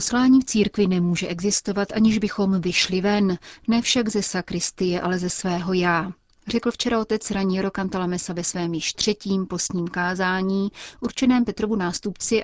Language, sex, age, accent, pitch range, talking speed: Czech, female, 30-49, native, 180-210 Hz, 150 wpm